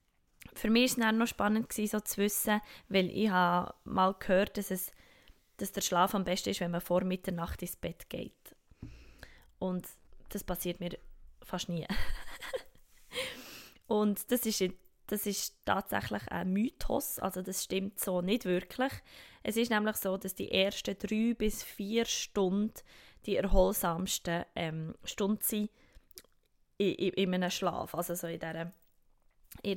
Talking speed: 155 wpm